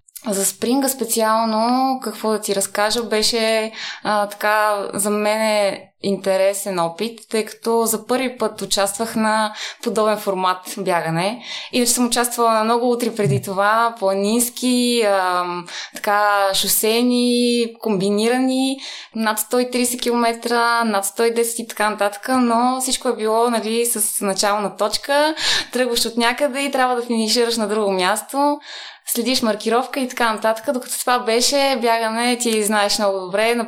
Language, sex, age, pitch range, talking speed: Bulgarian, female, 20-39, 205-240 Hz, 140 wpm